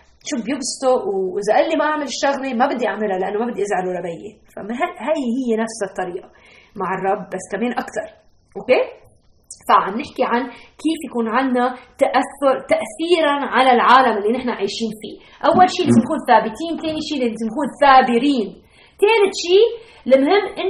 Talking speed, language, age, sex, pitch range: 160 wpm, Arabic, 20-39, female, 225-320 Hz